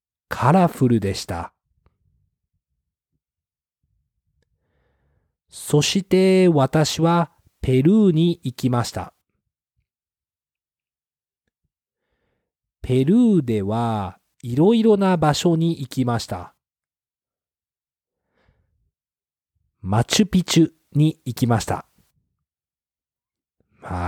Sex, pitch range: male, 105-165 Hz